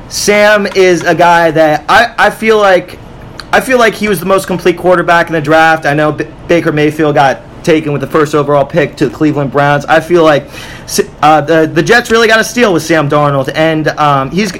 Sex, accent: male, American